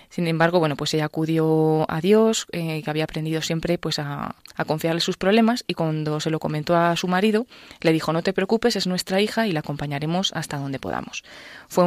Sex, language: female, Spanish